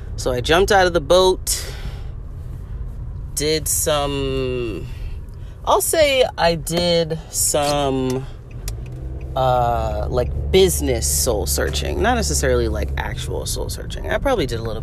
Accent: American